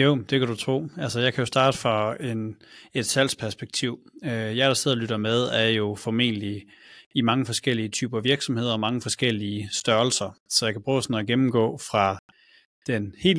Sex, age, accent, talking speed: male, 30-49, native, 190 wpm